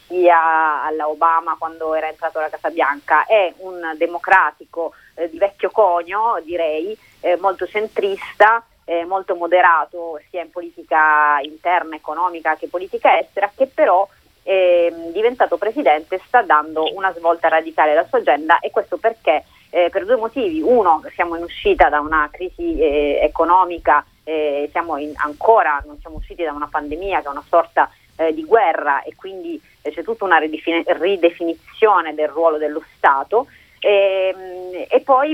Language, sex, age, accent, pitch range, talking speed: Italian, female, 30-49, native, 155-190 Hz, 155 wpm